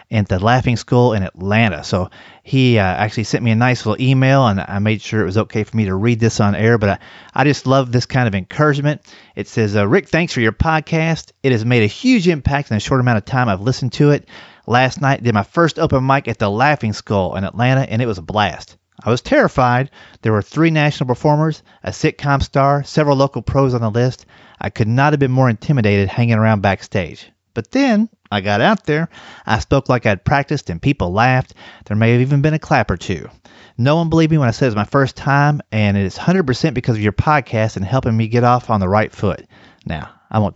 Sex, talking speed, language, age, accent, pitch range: male, 240 wpm, English, 30-49, American, 110-140 Hz